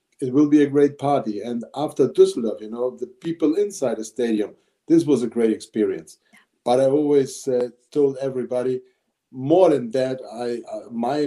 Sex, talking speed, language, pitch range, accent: male, 175 wpm, English, 110-130 Hz, German